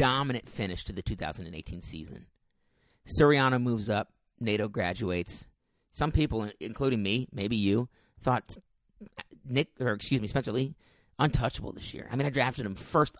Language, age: English, 40-59